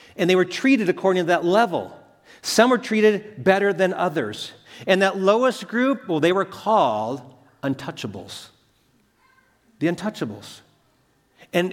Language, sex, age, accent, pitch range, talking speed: English, male, 40-59, American, 135-190 Hz, 135 wpm